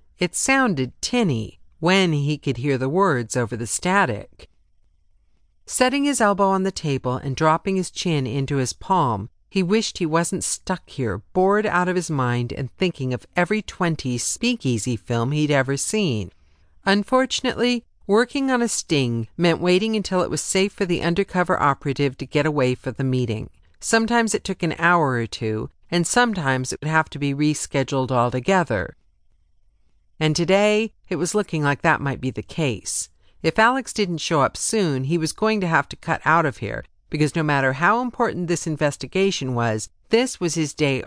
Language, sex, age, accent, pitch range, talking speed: English, female, 50-69, American, 130-190 Hz, 180 wpm